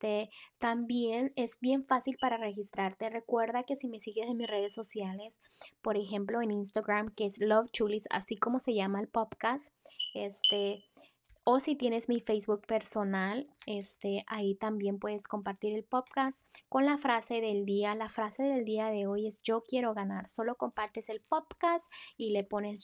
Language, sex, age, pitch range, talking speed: Spanish, female, 10-29, 210-240 Hz, 175 wpm